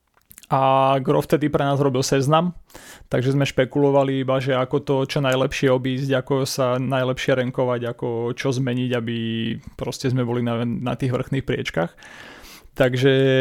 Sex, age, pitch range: male, 30-49, 130-150 Hz